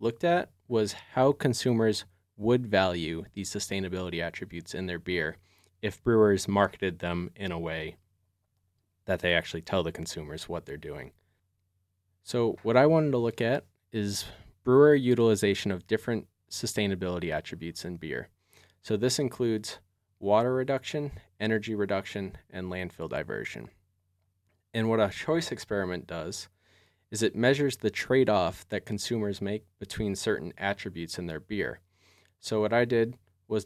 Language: English